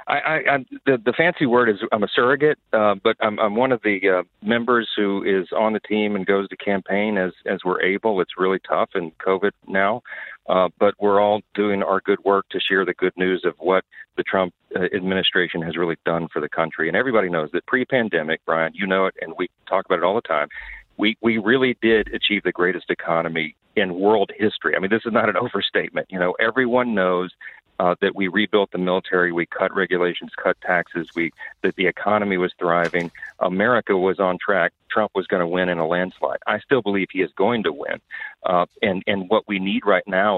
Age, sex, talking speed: 40-59, male, 220 wpm